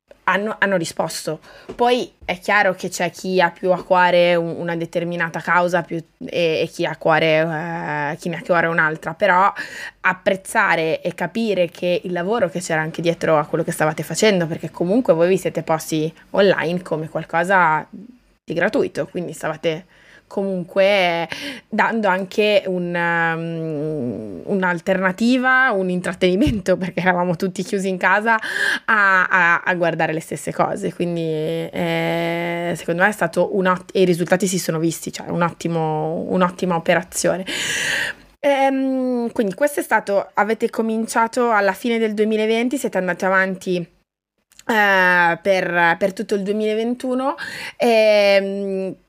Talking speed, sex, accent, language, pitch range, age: 145 wpm, female, native, Italian, 170-205 Hz, 20-39